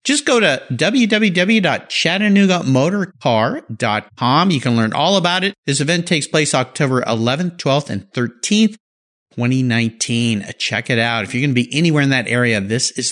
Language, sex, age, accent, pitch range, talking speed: English, male, 50-69, American, 130-215 Hz, 155 wpm